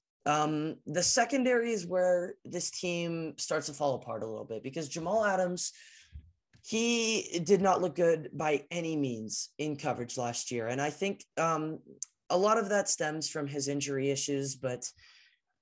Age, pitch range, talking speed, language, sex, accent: 20-39, 140-170 Hz, 165 wpm, English, male, American